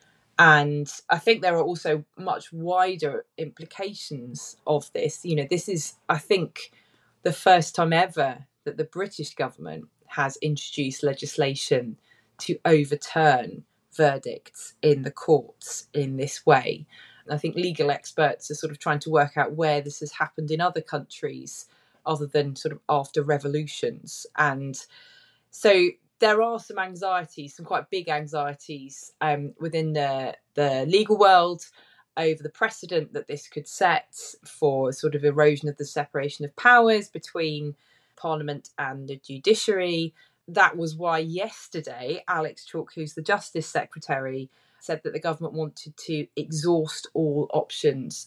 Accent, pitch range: British, 145-175 Hz